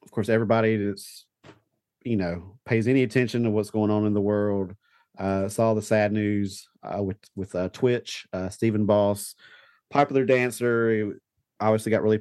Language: English